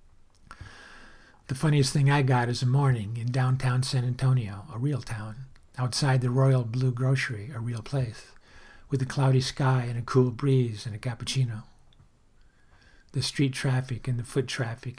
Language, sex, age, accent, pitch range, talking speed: English, male, 50-69, American, 115-130 Hz, 165 wpm